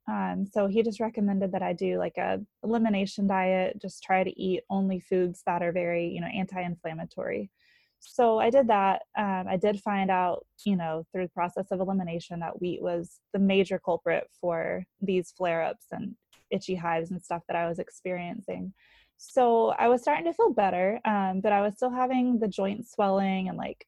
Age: 20-39